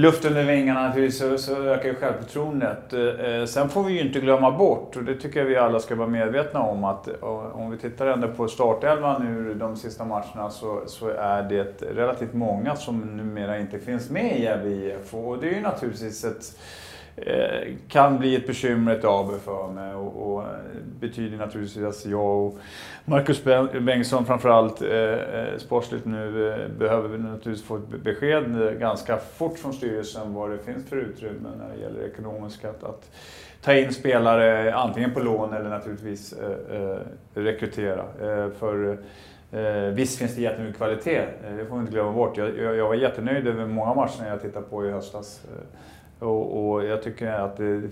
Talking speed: 185 wpm